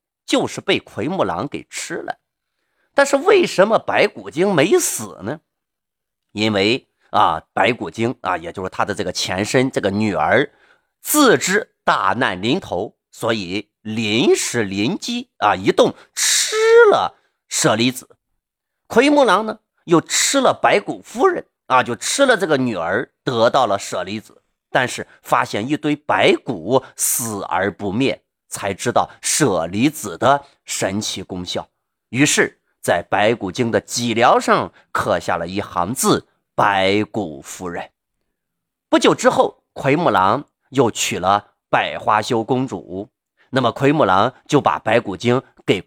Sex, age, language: male, 30-49, Chinese